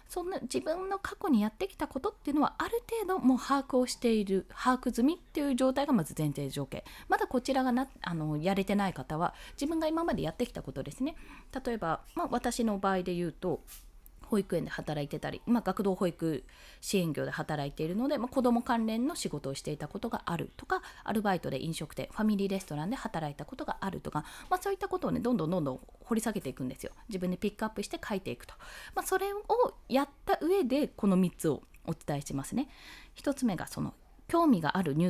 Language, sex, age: Japanese, female, 20-39